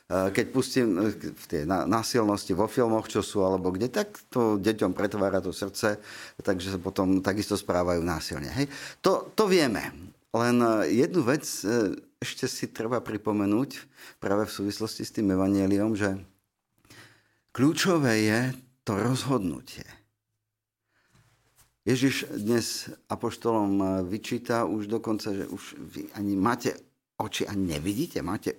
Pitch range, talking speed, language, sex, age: 95-120 Hz, 125 wpm, Slovak, male, 50-69